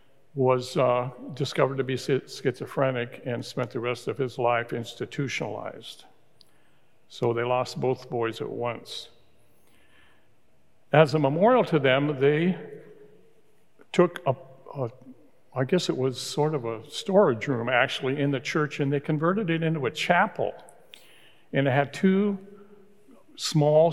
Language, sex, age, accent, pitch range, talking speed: English, male, 60-79, American, 130-160 Hz, 140 wpm